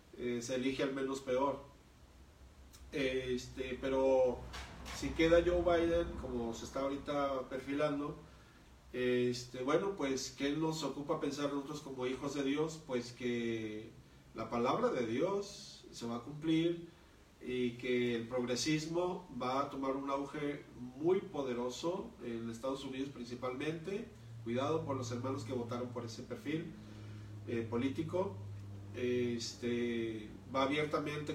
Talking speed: 135 wpm